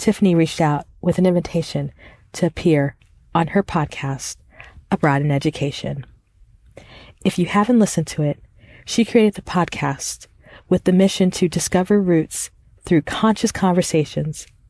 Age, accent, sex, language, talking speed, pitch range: 40-59, American, female, English, 135 wpm, 140-185 Hz